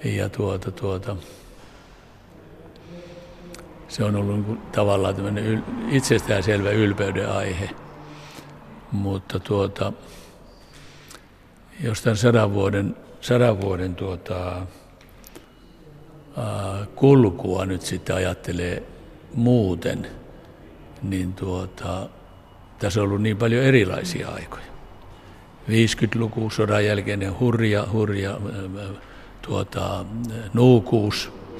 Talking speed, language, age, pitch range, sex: 80 wpm, Finnish, 60-79, 95-115 Hz, male